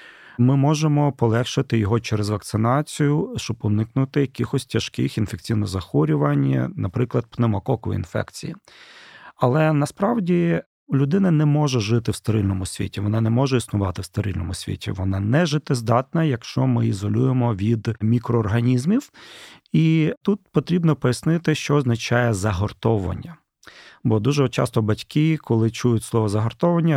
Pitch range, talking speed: 115-145 Hz, 120 wpm